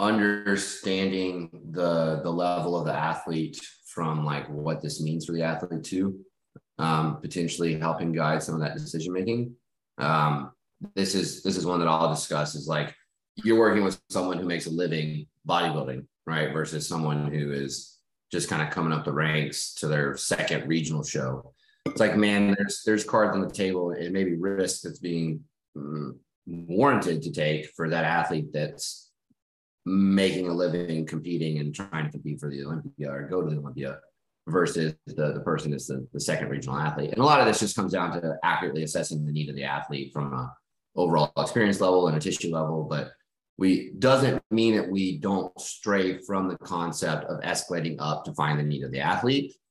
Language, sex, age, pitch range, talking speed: English, male, 30-49, 75-95 Hz, 190 wpm